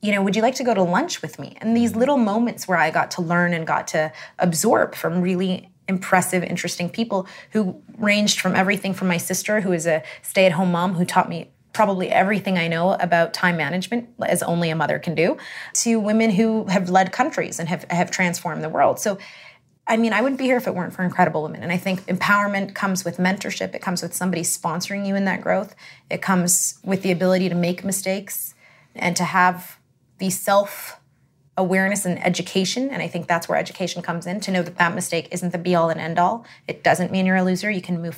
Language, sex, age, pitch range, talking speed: English, female, 20-39, 170-200 Hz, 220 wpm